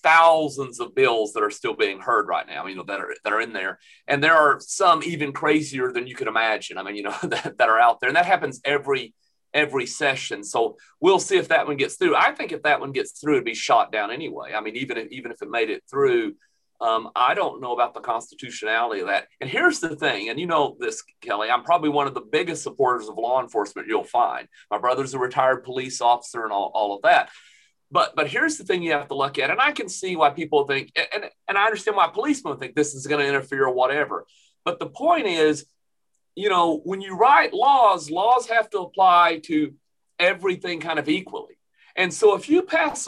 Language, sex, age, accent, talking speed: English, male, 40-59, American, 235 wpm